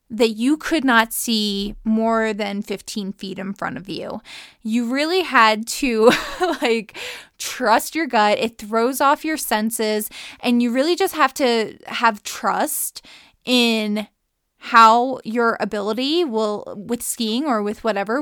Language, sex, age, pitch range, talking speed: English, female, 20-39, 210-265 Hz, 145 wpm